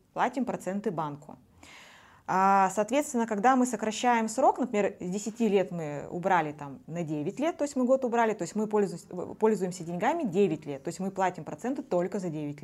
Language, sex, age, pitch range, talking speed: Russian, female, 20-39, 170-215 Hz, 180 wpm